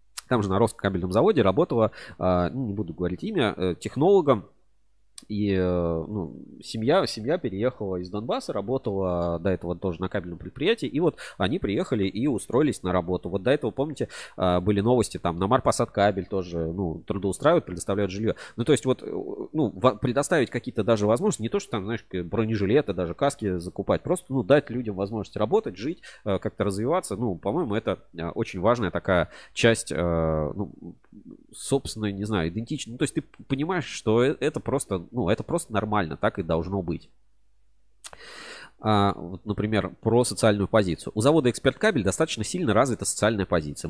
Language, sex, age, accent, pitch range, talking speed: Russian, male, 20-39, native, 90-120 Hz, 160 wpm